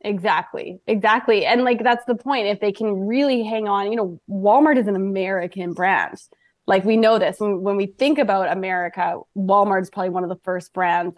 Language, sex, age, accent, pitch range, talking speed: English, female, 20-39, American, 185-225 Hz, 205 wpm